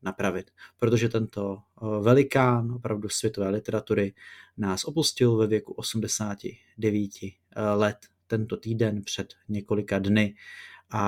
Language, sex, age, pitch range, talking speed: Czech, male, 30-49, 105-120 Hz, 95 wpm